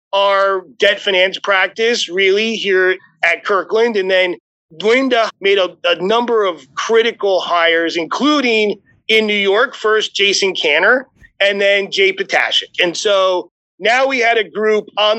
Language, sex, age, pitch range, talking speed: English, male, 30-49, 195-265 Hz, 145 wpm